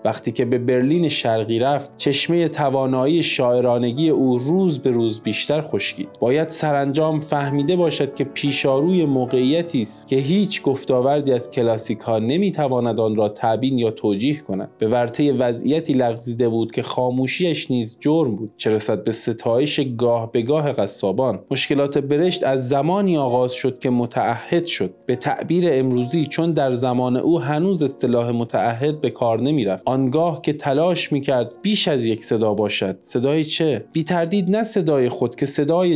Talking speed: 155 wpm